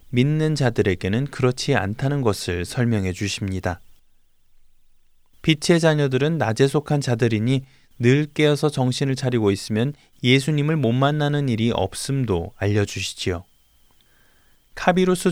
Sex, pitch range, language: male, 105-150 Hz, Korean